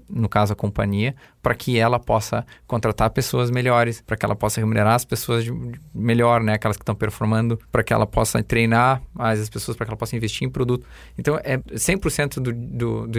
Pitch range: 115-150 Hz